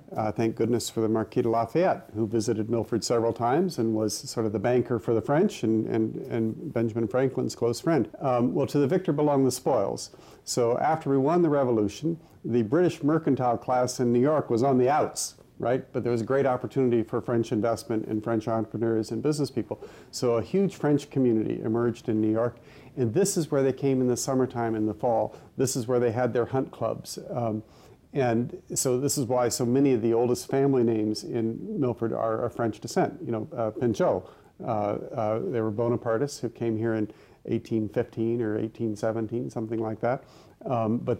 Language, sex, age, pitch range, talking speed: English, male, 50-69, 115-130 Hz, 200 wpm